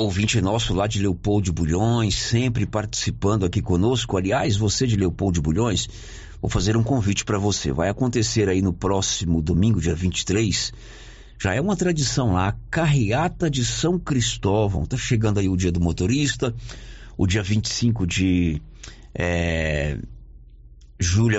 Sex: male